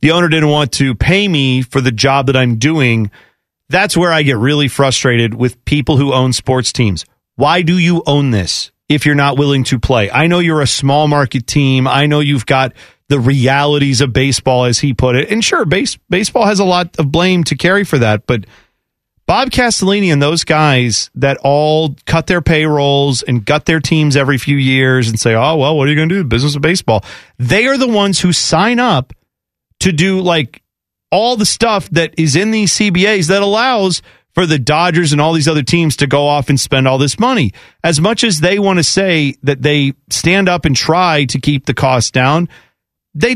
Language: English